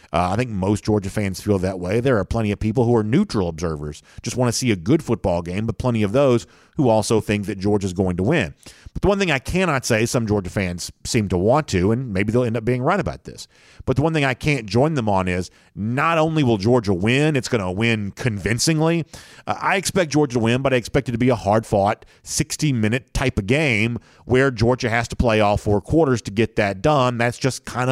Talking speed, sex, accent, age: 245 wpm, male, American, 40-59